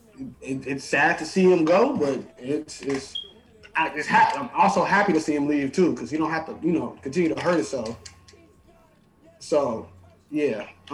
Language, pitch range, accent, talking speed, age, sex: English, 125-195 Hz, American, 185 wpm, 20-39, male